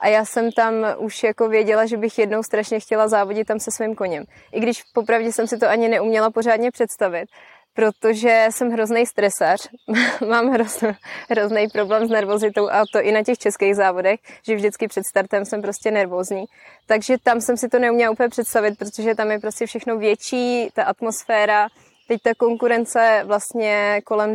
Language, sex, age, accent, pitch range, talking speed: Czech, female, 20-39, native, 200-230 Hz, 175 wpm